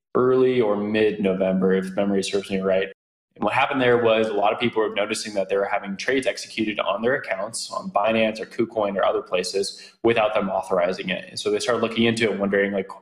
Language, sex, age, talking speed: English, male, 20-39, 225 wpm